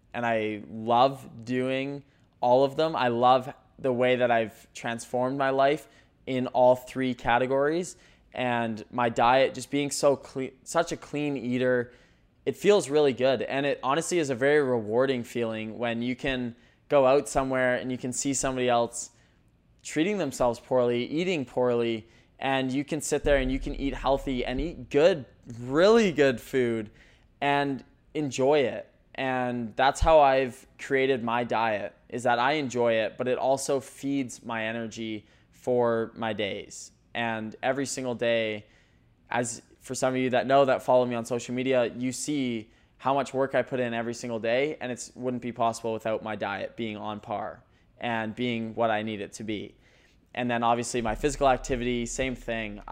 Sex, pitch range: male, 115-135 Hz